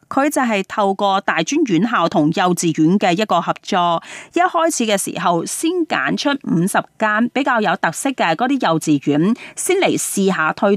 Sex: female